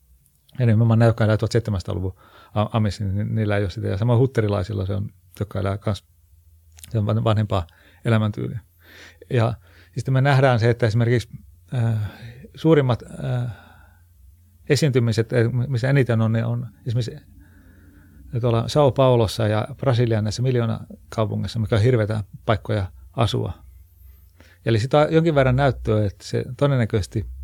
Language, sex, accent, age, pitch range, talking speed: Finnish, male, native, 40-59, 100-125 Hz, 125 wpm